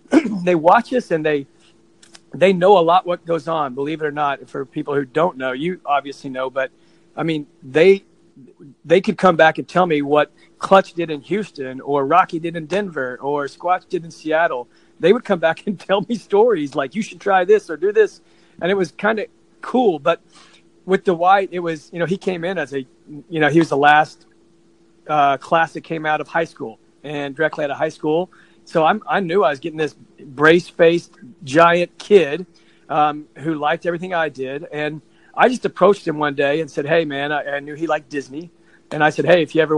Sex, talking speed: male, 220 wpm